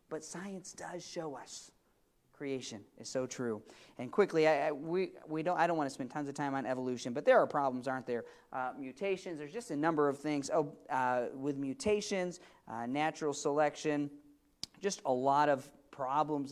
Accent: American